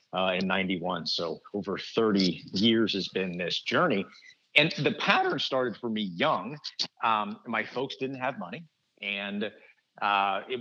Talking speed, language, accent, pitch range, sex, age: 155 wpm, English, American, 110-145 Hz, male, 50-69